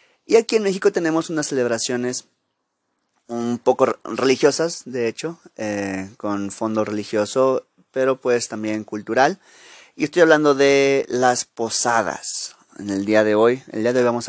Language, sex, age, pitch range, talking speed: Spanish, male, 30-49, 105-135 Hz, 155 wpm